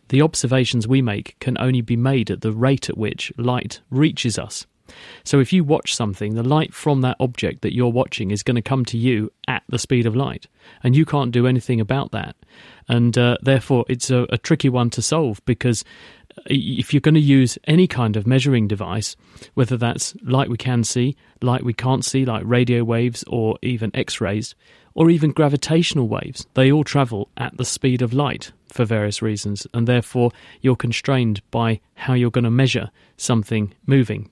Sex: male